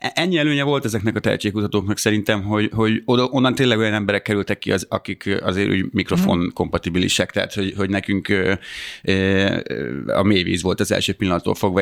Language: Hungarian